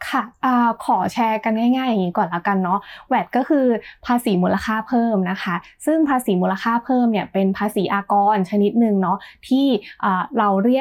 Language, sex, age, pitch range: Thai, female, 20-39, 195-240 Hz